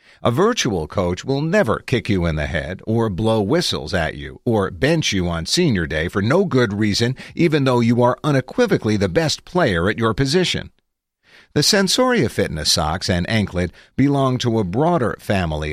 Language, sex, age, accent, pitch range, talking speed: English, male, 50-69, American, 90-135 Hz, 180 wpm